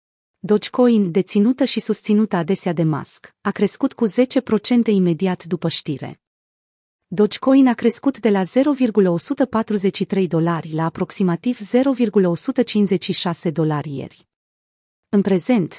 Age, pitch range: 30-49, 175-235 Hz